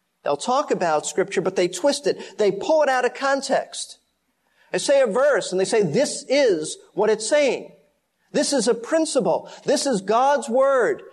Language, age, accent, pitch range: English, 40-59, American, 190-270 Hz